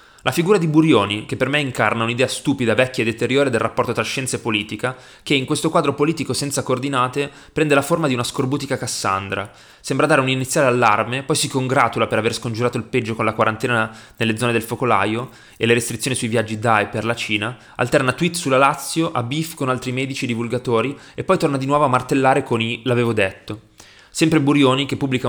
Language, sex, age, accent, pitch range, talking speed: Italian, male, 20-39, native, 115-140 Hz, 210 wpm